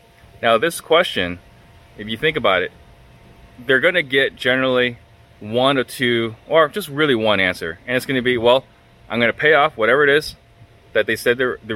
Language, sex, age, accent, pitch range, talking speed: English, male, 20-39, American, 115-145 Hz, 185 wpm